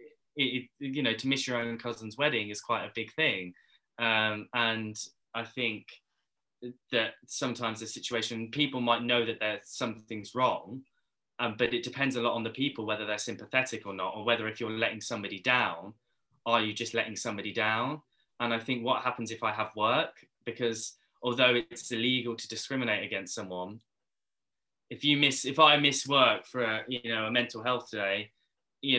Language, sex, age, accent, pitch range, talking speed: English, male, 10-29, British, 110-125 Hz, 180 wpm